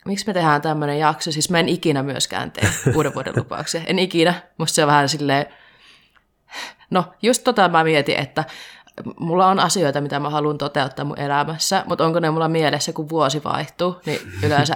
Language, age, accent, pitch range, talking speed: Finnish, 20-39, native, 145-170 Hz, 185 wpm